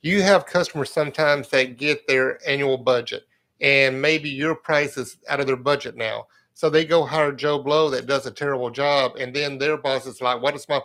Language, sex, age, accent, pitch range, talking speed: English, male, 50-69, American, 130-150 Hz, 215 wpm